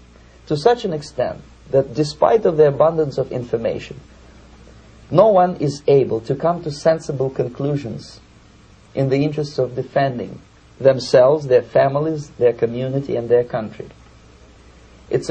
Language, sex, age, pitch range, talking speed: English, male, 50-69, 120-155 Hz, 135 wpm